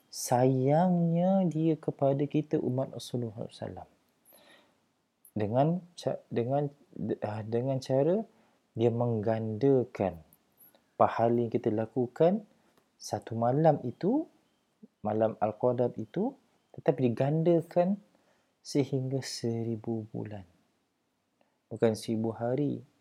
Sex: male